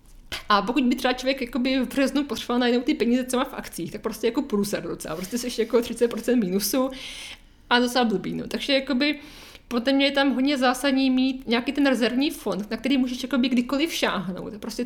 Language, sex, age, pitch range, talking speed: Czech, female, 20-39, 225-255 Hz, 190 wpm